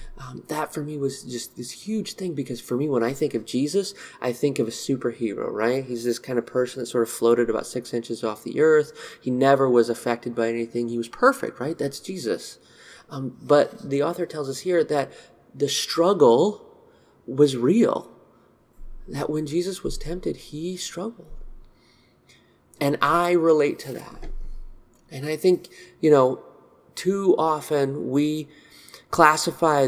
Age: 30-49